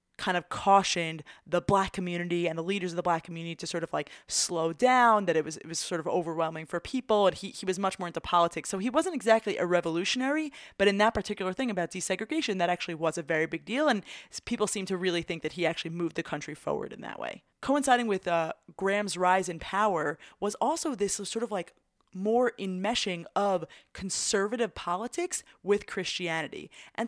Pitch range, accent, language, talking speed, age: 170-220 Hz, American, English, 210 wpm, 20-39